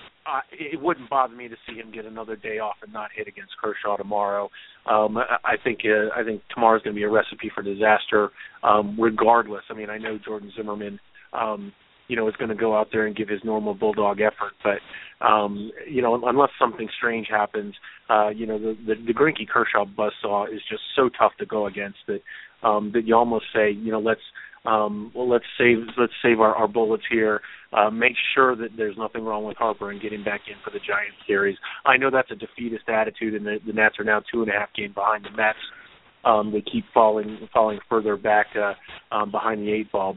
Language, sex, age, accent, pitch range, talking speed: English, male, 30-49, American, 105-115 Hz, 225 wpm